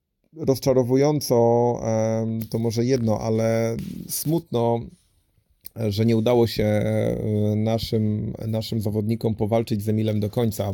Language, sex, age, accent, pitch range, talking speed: Polish, male, 30-49, native, 105-115 Hz, 100 wpm